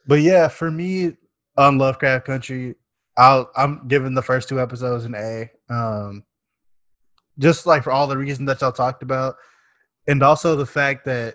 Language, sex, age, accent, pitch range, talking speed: English, male, 20-39, American, 115-130 Hz, 175 wpm